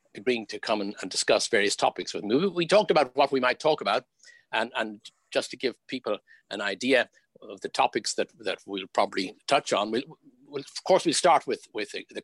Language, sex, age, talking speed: English, male, 60-79, 220 wpm